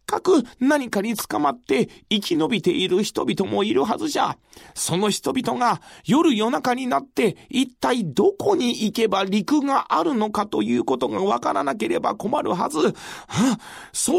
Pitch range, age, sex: 210-345 Hz, 40-59, male